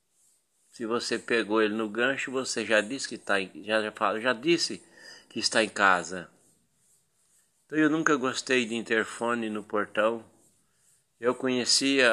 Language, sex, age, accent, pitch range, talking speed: Portuguese, male, 60-79, Brazilian, 115-145 Hz, 150 wpm